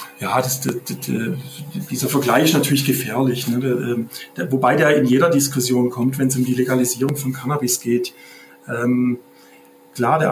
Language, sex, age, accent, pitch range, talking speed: German, male, 40-59, German, 130-180 Hz, 175 wpm